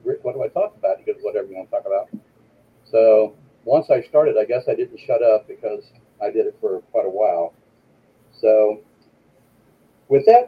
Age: 50-69